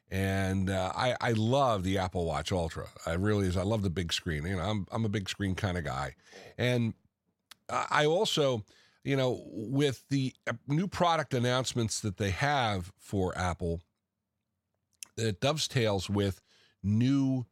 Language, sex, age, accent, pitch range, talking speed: English, male, 50-69, American, 100-135 Hz, 160 wpm